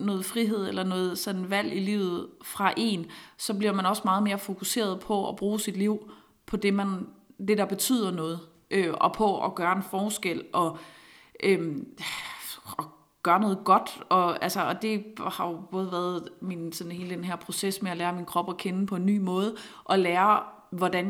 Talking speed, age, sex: 200 wpm, 30-49, female